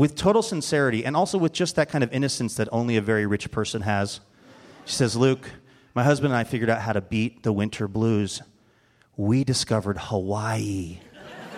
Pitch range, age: 110-150 Hz, 30-49